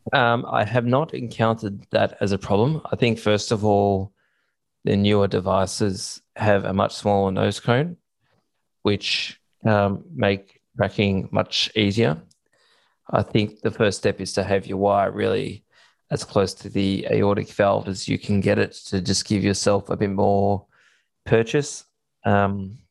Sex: male